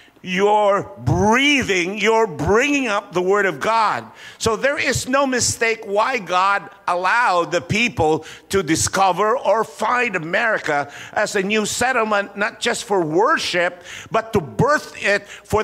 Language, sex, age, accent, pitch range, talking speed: English, male, 50-69, American, 175-230 Hz, 140 wpm